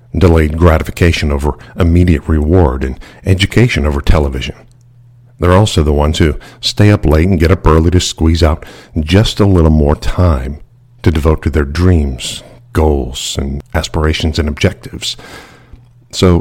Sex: male